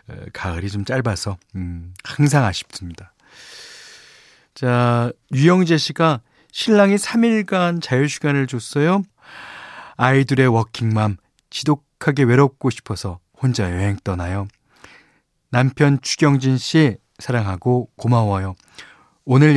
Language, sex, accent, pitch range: Korean, male, native, 105-150 Hz